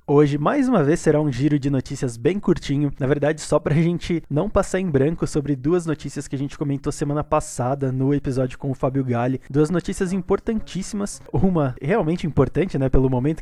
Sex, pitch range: male, 130-160 Hz